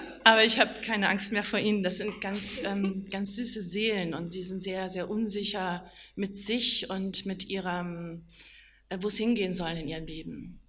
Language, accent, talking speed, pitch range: German, German, 185 wpm, 180-215 Hz